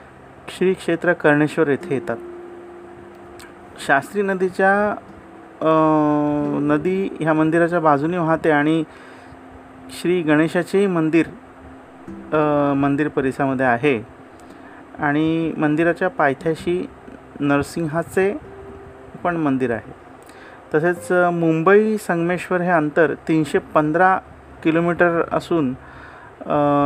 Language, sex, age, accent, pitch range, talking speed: Marathi, male, 40-59, native, 145-180 Hz, 85 wpm